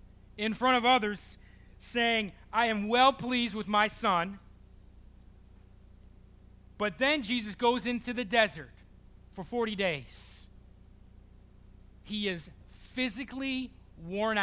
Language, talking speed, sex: English, 110 wpm, male